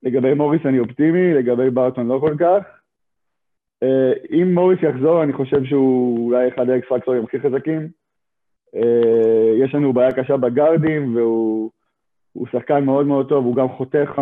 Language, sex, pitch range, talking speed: Hebrew, male, 120-150 Hz, 145 wpm